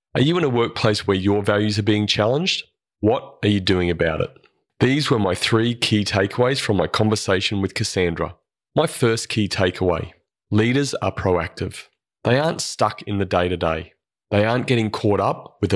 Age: 30-49